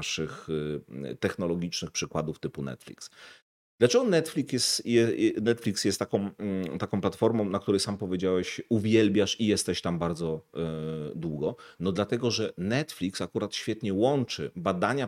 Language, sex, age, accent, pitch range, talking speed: Polish, male, 40-59, native, 85-125 Hz, 125 wpm